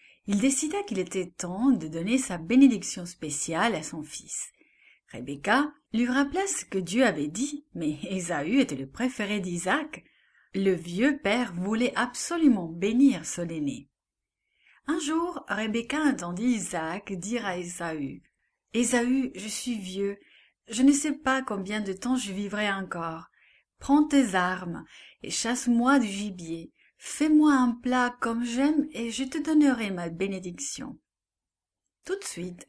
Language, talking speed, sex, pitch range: English, 145 wpm, female, 175-265 Hz